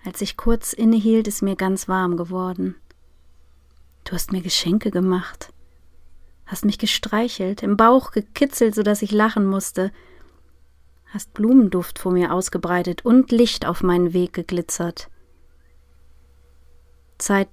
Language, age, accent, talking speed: German, 30-49, German, 125 wpm